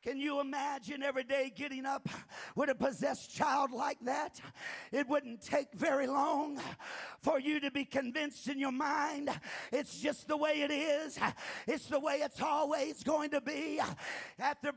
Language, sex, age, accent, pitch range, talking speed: English, male, 50-69, American, 290-320 Hz, 165 wpm